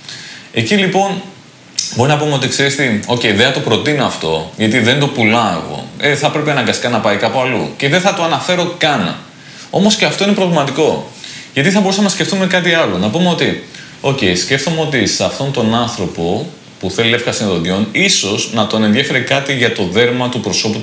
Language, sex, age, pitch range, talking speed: Greek, male, 30-49, 110-160 Hz, 200 wpm